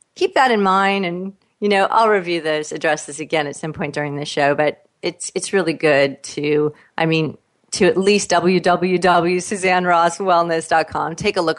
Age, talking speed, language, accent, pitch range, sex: 40-59, 170 wpm, English, American, 155-210 Hz, female